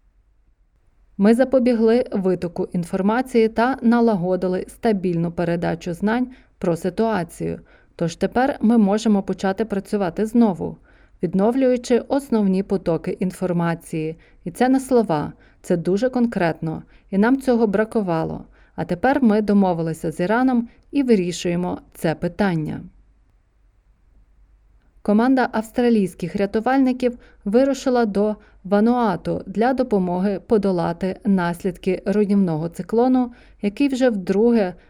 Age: 30-49